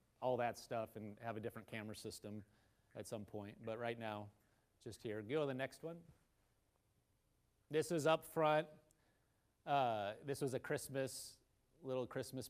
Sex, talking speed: male, 160 wpm